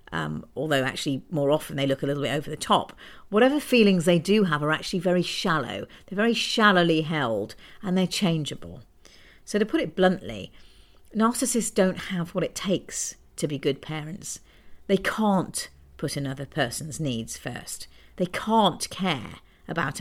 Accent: British